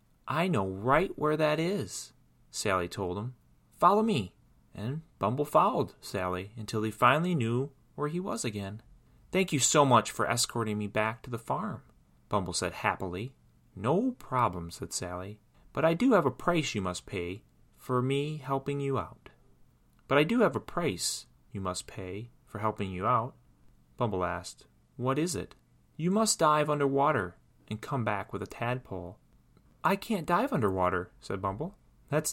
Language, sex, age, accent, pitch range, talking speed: English, male, 30-49, American, 95-135 Hz, 170 wpm